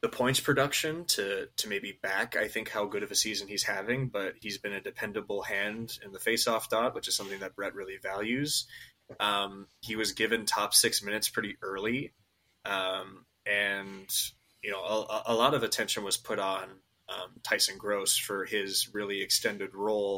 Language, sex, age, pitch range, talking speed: English, male, 20-39, 100-130 Hz, 185 wpm